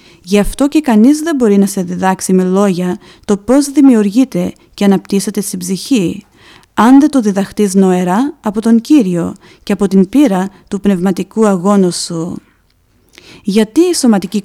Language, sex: Greek, female